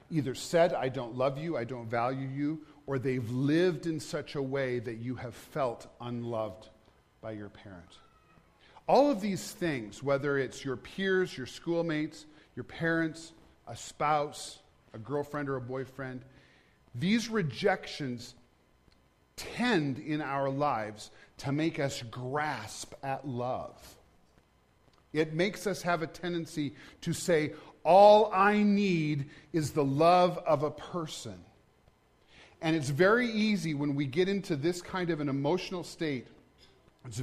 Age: 40-59